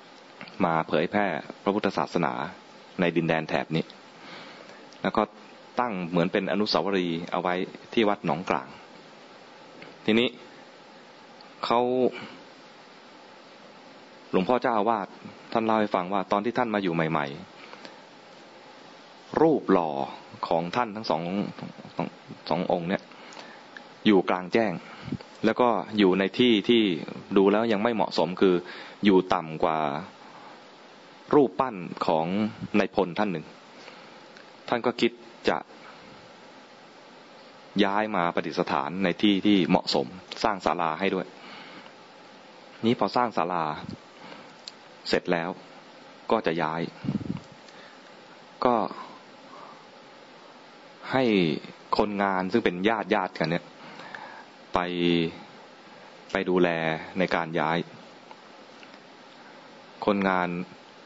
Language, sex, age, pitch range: English, male, 20-39, 85-110 Hz